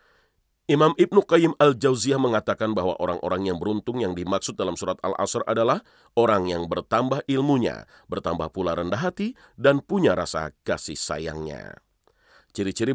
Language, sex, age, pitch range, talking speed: Indonesian, male, 40-59, 85-140 Hz, 140 wpm